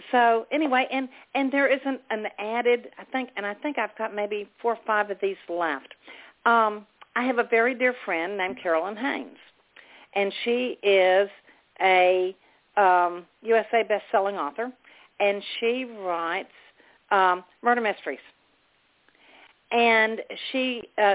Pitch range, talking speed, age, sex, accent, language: 190-235 Hz, 140 wpm, 50-69, female, American, English